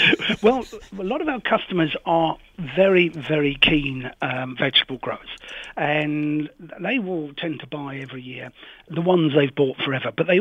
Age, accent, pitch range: 50-69, British, 130-165 Hz